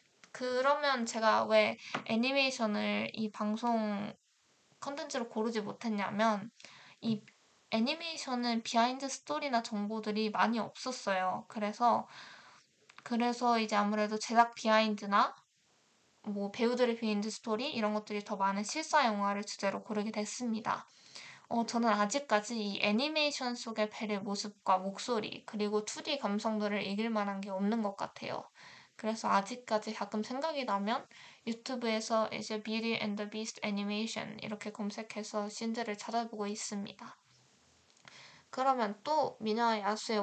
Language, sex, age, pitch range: Korean, female, 20-39, 210-240 Hz